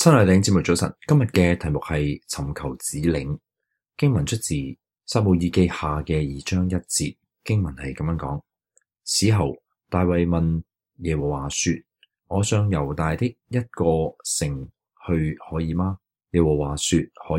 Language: Chinese